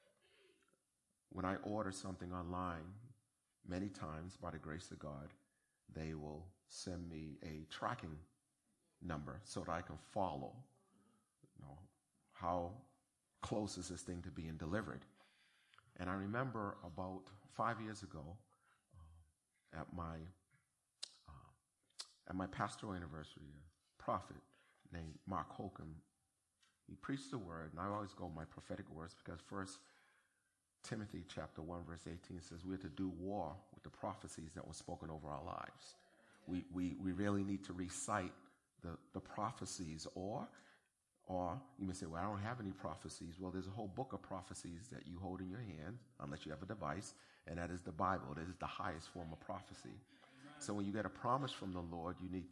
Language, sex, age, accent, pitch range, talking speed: English, male, 30-49, American, 85-100 Hz, 170 wpm